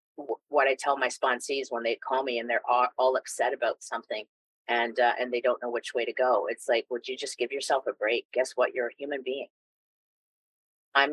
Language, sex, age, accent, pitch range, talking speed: English, female, 30-49, American, 125-155 Hz, 225 wpm